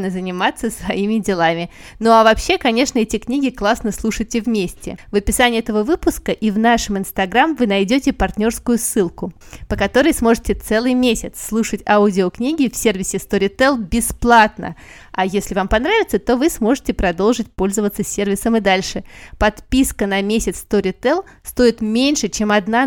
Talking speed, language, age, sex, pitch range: 145 wpm, Russian, 20-39, female, 200-245 Hz